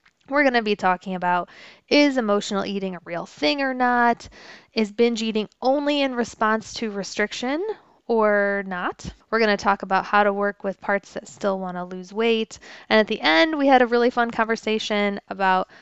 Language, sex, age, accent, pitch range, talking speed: English, female, 20-39, American, 195-245 Hz, 190 wpm